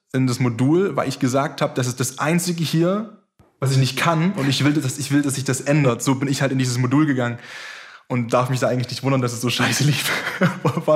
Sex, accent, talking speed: male, German, 255 wpm